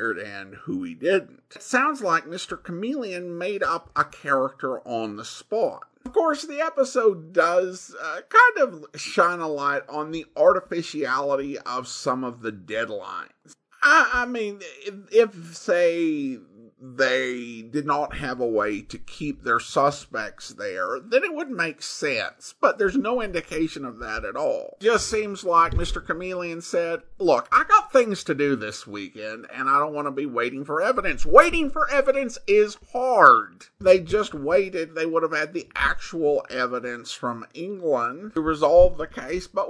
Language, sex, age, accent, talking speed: English, male, 50-69, American, 165 wpm